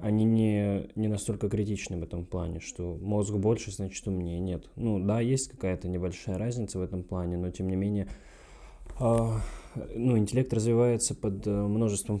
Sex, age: male, 20-39